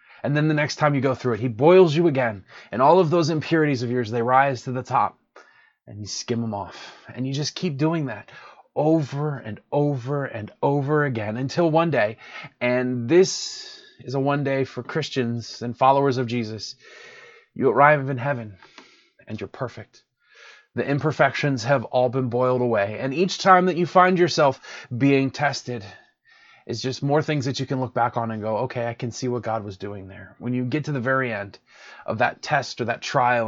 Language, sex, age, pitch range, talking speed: English, male, 20-39, 115-150 Hz, 205 wpm